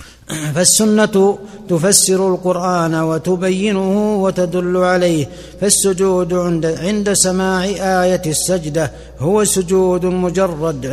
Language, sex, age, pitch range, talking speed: Arabic, male, 60-79, 175-190 Hz, 75 wpm